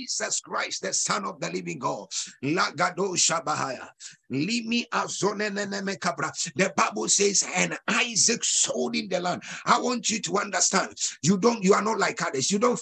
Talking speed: 145 wpm